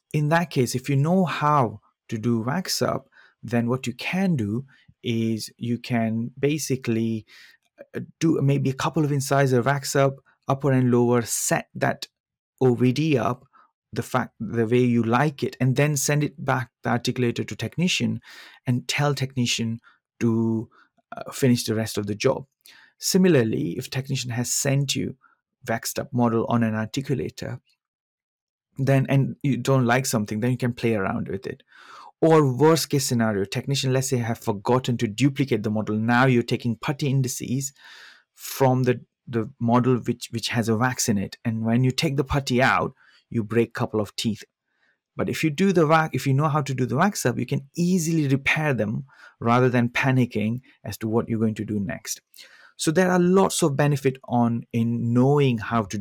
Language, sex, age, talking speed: English, male, 30-49, 180 wpm